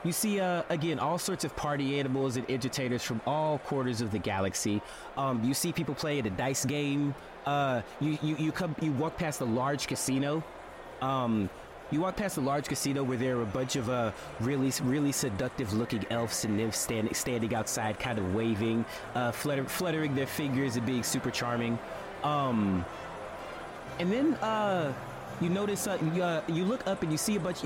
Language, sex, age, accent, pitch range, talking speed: English, male, 30-49, American, 110-160 Hz, 195 wpm